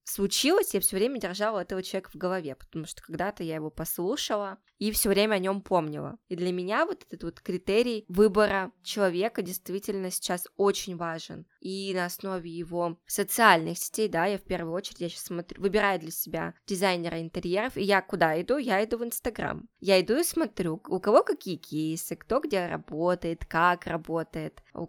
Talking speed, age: 180 wpm, 20-39